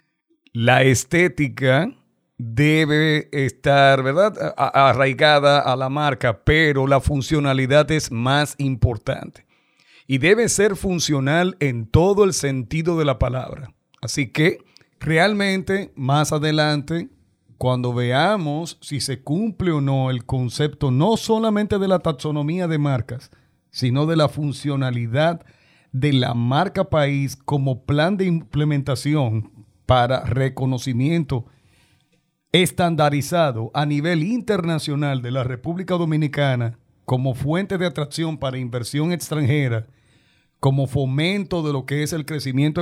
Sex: male